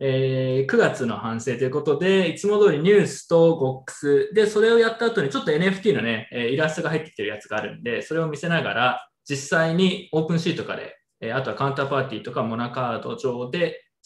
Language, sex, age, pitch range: Japanese, male, 20-39, 135-215 Hz